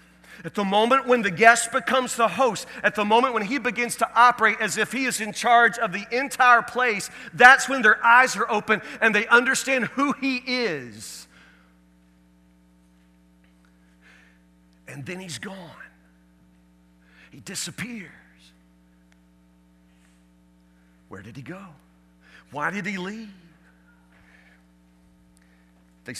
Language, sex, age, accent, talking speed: English, male, 40-59, American, 125 wpm